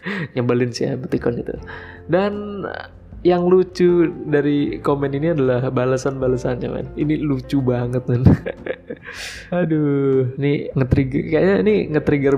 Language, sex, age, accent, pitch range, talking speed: Indonesian, male, 20-39, native, 125-155 Hz, 105 wpm